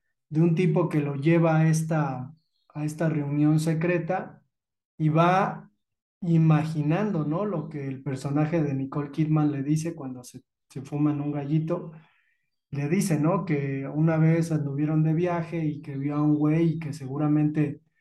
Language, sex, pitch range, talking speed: Spanish, male, 150-170 Hz, 165 wpm